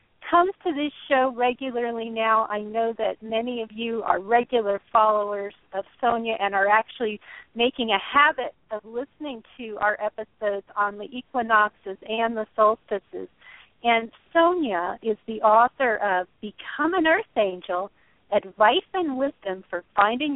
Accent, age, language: American, 40-59, English